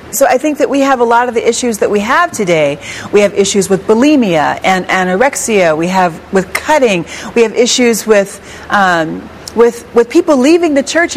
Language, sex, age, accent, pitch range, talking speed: English, female, 40-59, American, 215-285 Hz, 200 wpm